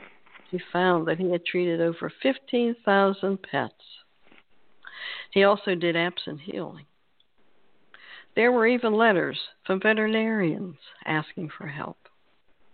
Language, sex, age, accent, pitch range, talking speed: English, female, 60-79, American, 170-230 Hz, 110 wpm